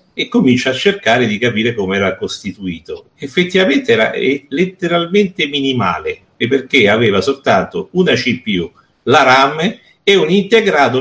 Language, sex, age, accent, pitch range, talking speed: Italian, male, 60-79, native, 120-195 Hz, 130 wpm